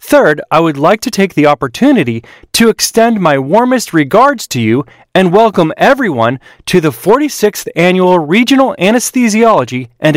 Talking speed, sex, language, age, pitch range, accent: 150 wpm, male, English, 30-49, 150-240 Hz, American